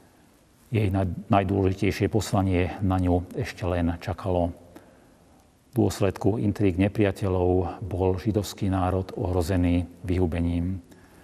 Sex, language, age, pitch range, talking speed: male, Slovak, 40-59, 90-100 Hz, 90 wpm